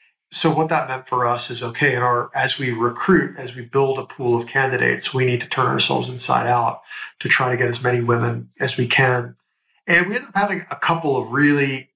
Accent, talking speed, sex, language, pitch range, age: American, 230 wpm, male, English, 125-160 Hz, 40-59